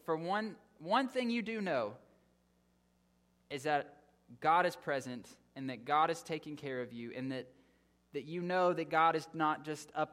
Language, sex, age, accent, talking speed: English, male, 20-39, American, 185 wpm